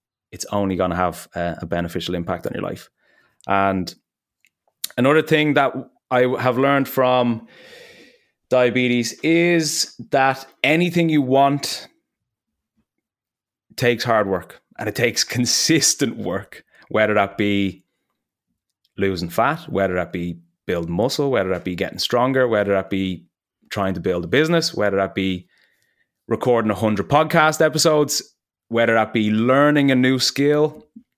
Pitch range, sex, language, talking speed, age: 100-130 Hz, male, English, 135 wpm, 20-39